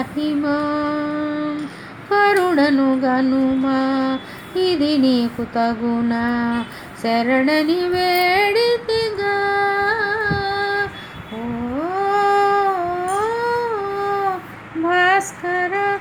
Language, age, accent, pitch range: Telugu, 20-39, native, 265-395 Hz